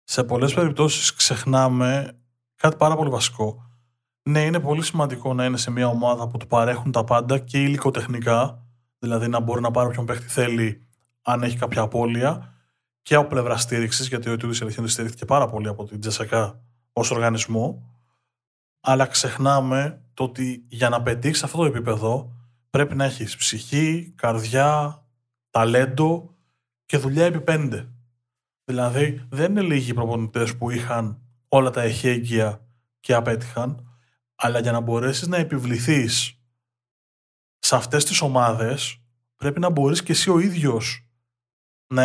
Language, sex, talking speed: Greek, male, 150 wpm